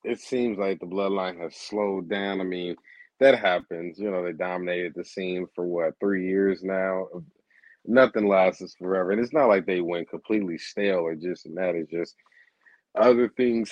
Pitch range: 90-110 Hz